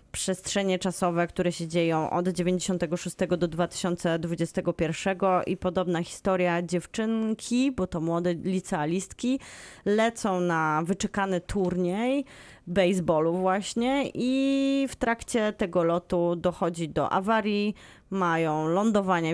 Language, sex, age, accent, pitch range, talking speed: Polish, female, 20-39, native, 170-210 Hz, 100 wpm